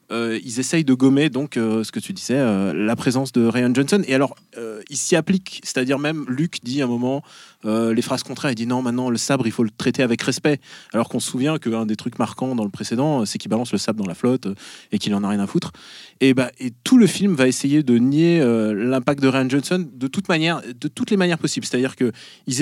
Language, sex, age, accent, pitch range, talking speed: French, male, 20-39, French, 120-160 Hz, 265 wpm